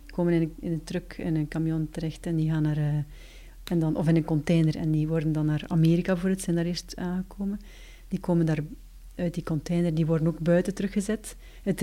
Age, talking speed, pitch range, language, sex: 40-59, 225 wpm, 160-190 Hz, Dutch, female